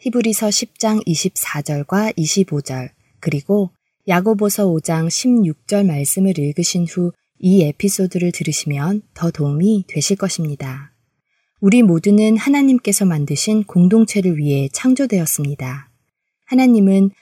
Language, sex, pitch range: Korean, female, 155-210 Hz